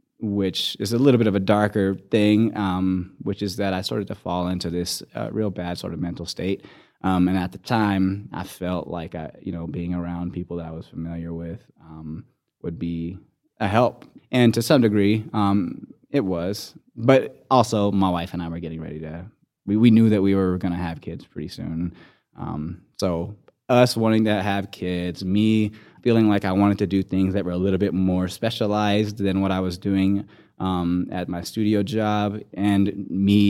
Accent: American